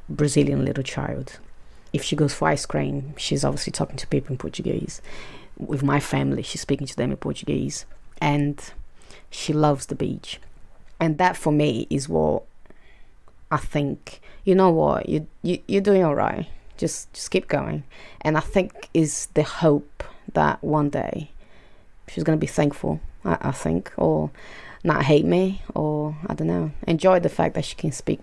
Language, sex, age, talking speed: English, female, 20-39, 175 wpm